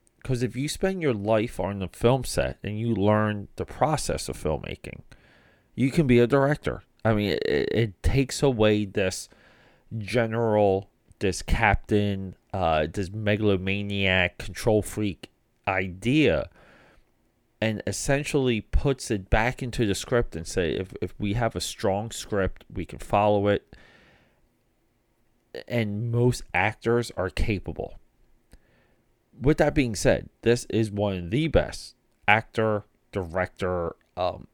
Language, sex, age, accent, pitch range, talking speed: English, male, 30-49, American, 95-120 Hz, 135 wpm